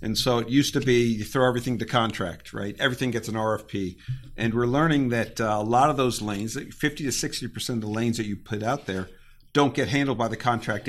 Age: 50-69